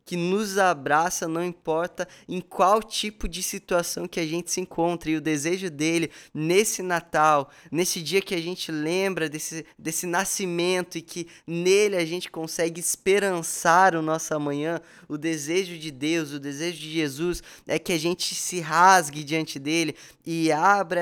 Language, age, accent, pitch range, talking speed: Portuguese, 20-39, Brazilian, 145-175 Hz, 165 wpm